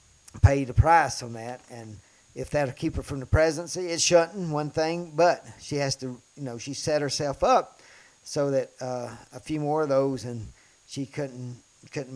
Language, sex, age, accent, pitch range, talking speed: English, male, 50-69, American, 125-150 Hz, 190 wpm